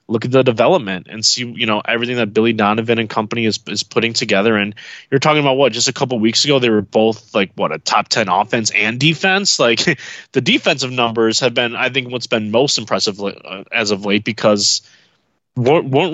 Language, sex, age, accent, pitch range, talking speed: English, male, 20-39, American, 110-140 Hz, 210 wpm